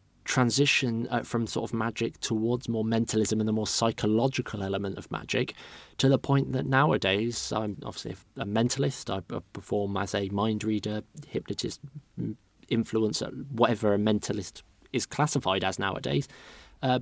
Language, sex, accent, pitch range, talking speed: English, male, British, 105-130 Hz, 140 wpm